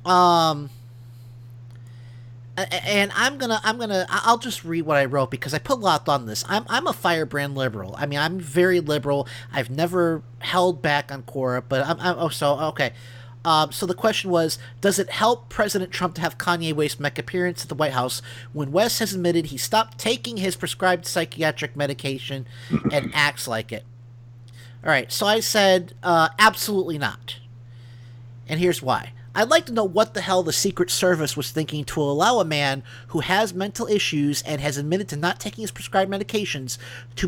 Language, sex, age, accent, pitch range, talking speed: English, male, 40-59, American, 120-190 Hz, 190 wpm